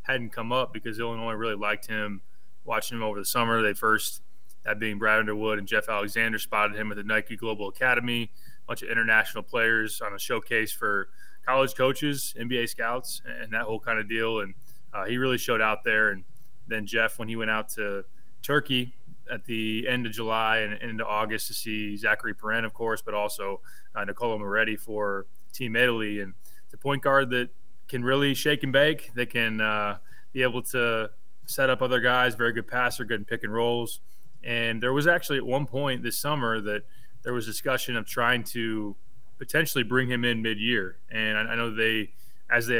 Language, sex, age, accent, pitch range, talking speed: English, male, 20-39, American, 110-125 Hz, 200 wpm